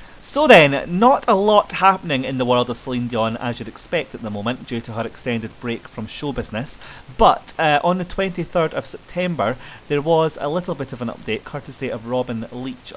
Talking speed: 210 wpm